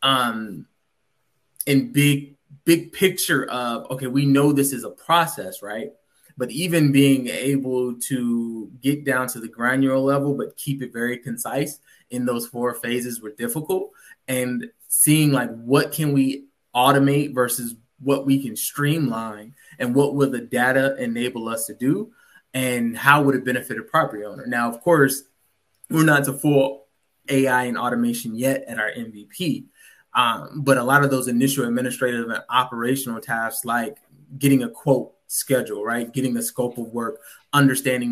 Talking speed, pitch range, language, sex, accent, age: 160 wpm, 120-140 Hz, English, male, American, 20-39